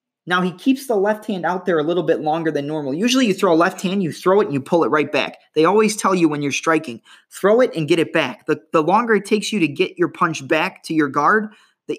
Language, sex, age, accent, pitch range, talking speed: English, male, 20-39, American, 155-200 Hz, 285 wpm